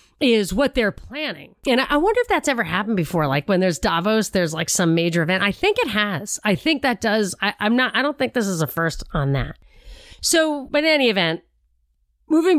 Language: English